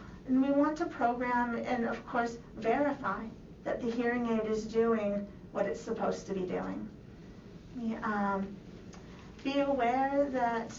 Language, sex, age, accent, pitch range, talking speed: English, female, 40-59, American, 195-240 Hz, 140 wpm